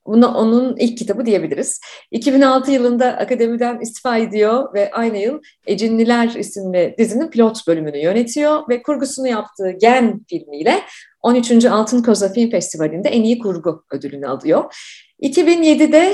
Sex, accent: female, native